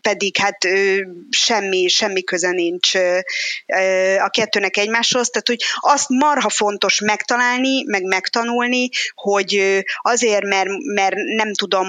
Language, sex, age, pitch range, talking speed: Hungarian, female, 20-39, 190-225 Hz, 115 wpm